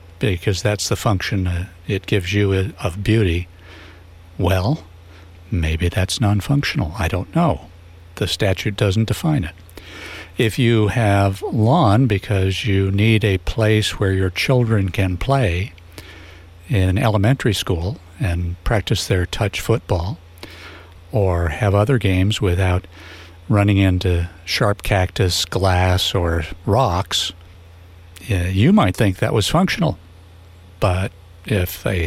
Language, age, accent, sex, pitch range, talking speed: English, 60-79, American, male, 85-110 Hz, 120 wpm